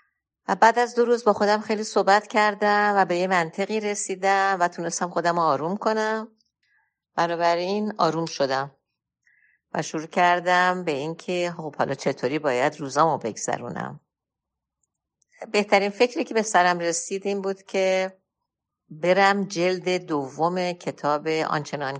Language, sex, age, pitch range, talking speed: Persian, female, 50-69, 150-195 Hz, 135 wpm